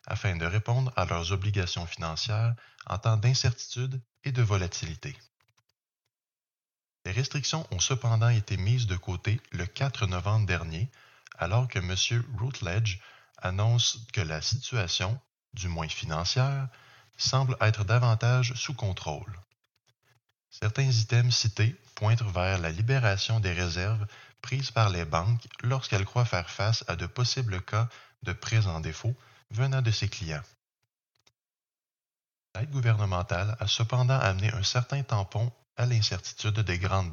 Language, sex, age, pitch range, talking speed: French, male, 20-39, 100-125 Hz, 135 wpm